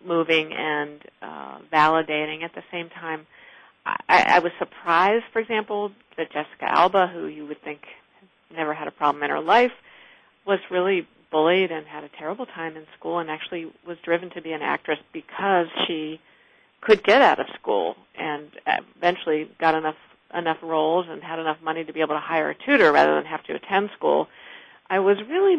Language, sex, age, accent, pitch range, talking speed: English, female, 50-69, American, 160-200 Hz, 185 wpm